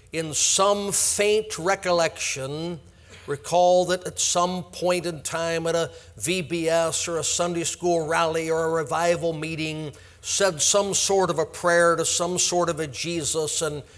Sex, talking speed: male, 155 wpm